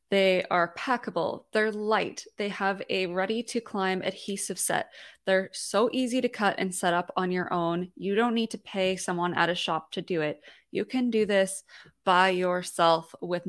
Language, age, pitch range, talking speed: English, 20-39, 180-215 Hz, 180 wpm